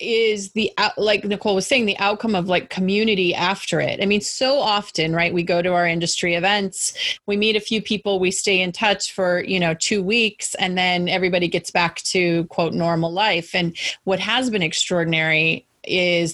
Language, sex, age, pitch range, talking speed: English, female, 30-49, 170-210 Hz, 195 wpm